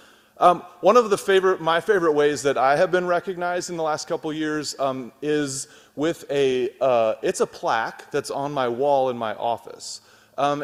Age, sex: 30-49, male